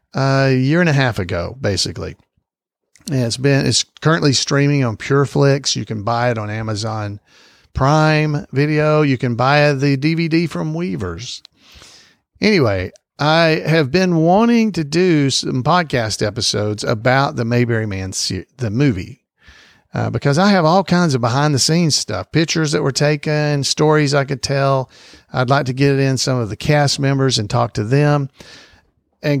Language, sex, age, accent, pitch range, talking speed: English, male, 50-69, American, 120-150 Hz, 165 wpm